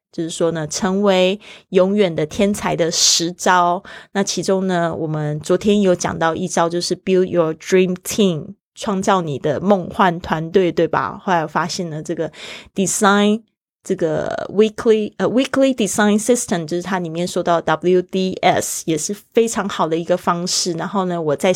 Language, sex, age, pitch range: Chinese, female, 20-39, 175-210 Hz